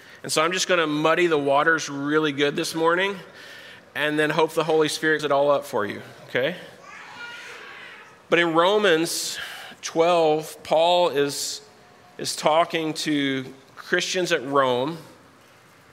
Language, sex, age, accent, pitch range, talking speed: English, male, 30-49, American, 135-160 Hz, 140 wpm